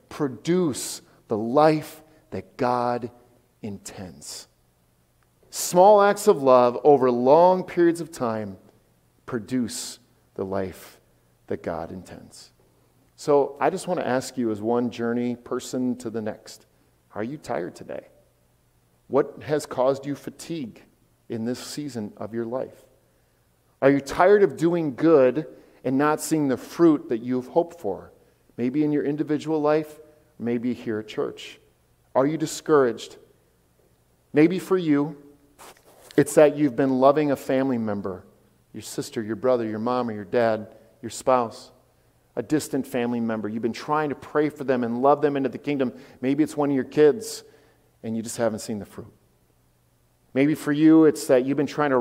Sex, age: male, 40-59